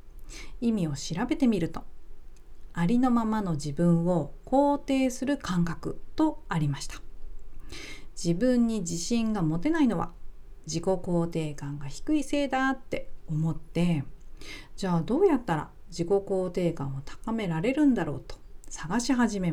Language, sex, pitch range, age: Japanese, female, 155-240 Hz, 40-59